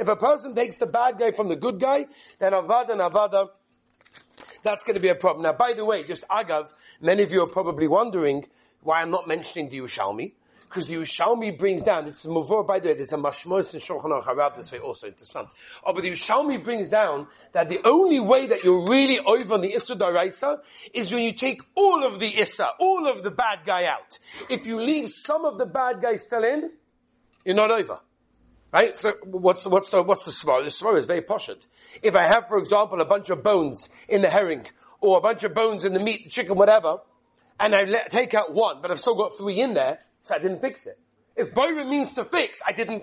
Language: English